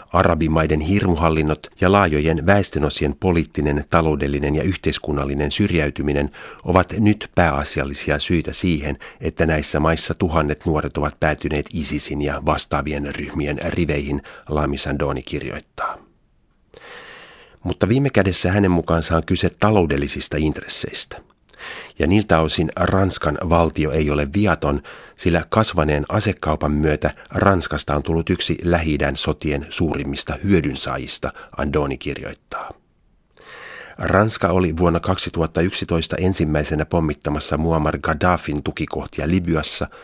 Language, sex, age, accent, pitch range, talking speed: Finnish, male, 30-49, native, 75-90 Hz, 105 wpm